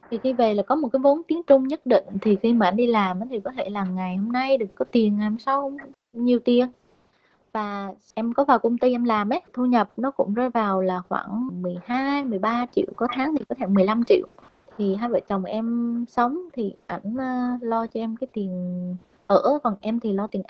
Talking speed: 230 wpm